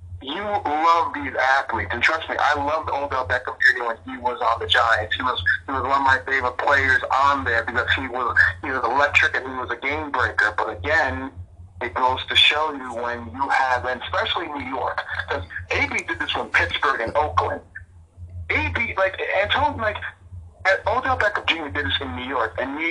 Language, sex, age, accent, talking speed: English, male, 40-59, American, 205 wpm